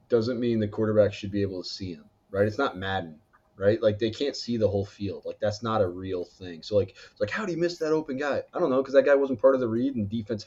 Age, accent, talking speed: 20-39, American, 300 wpm